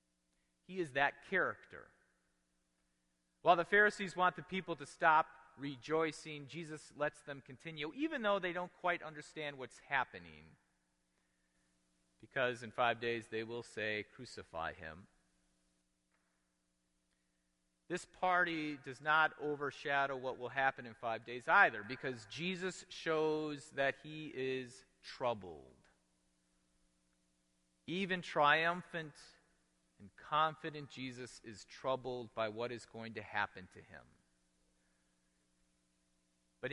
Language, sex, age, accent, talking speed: English, male, 40-59, American, 115 wpm